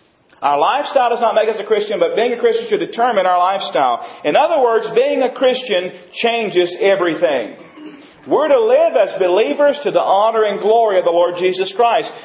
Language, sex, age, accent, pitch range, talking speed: English, male, 40-59, American, 190-295 Hz, 190 wpm